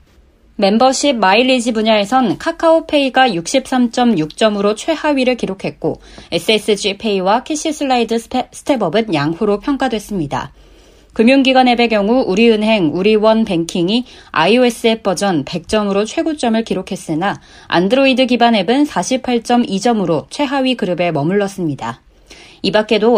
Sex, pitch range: female, 190-250 Hz